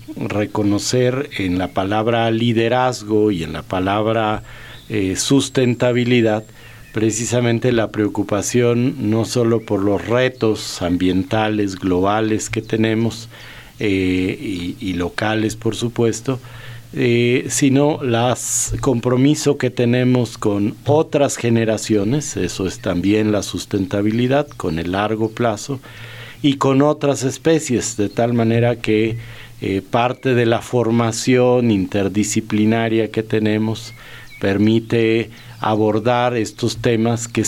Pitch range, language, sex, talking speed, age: 105-125 Hz, Spanish, male, 110 wpm, 50-69